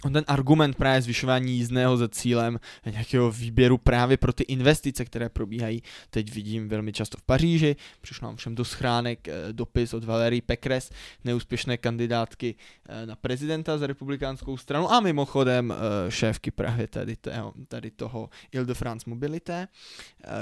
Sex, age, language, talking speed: male, 20-39, Czech, 155 wpm